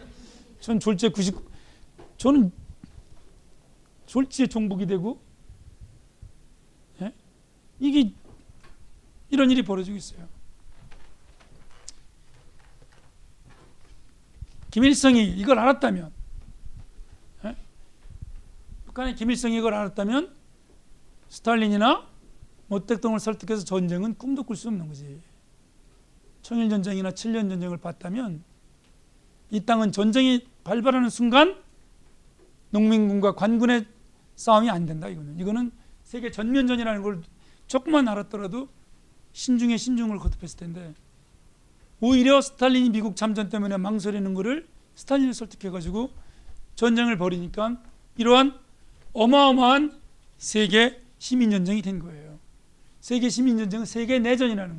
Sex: male